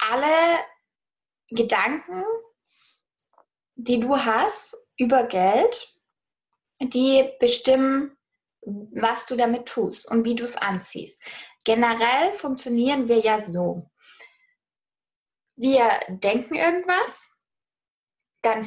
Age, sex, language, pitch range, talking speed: 20-39, female, English, 230-325 Hz, 85 wpm